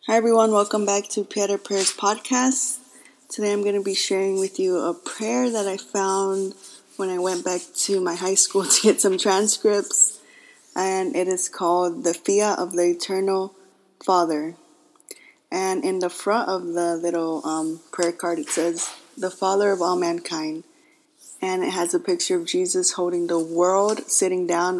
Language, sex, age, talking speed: English, female, 20-39, 175 wpm